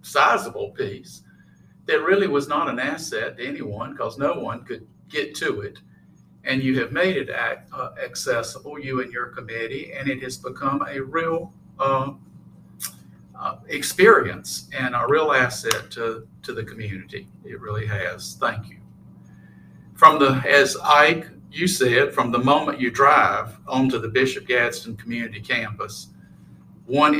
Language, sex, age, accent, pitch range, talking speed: English, male, 50-69, American, 110-145 Hz, 145 wpm